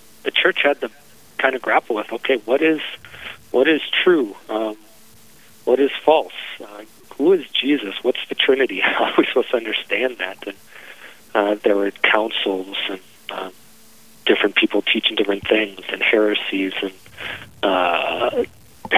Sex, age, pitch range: male, 40-59, 105-135 Hz